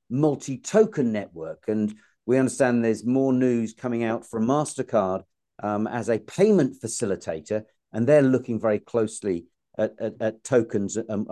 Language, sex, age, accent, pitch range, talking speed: English, male, 50-69, British, 115-155 Hz, 145 wpm